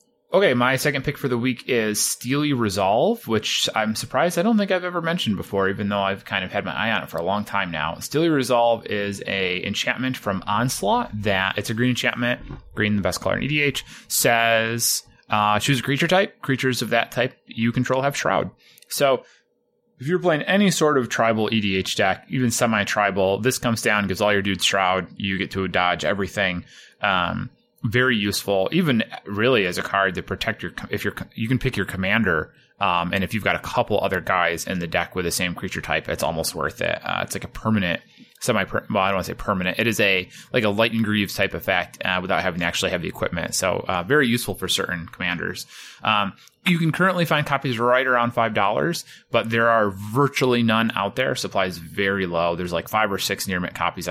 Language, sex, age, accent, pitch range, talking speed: English, male, 20-39, American, 95-130 Hz, 215 wpm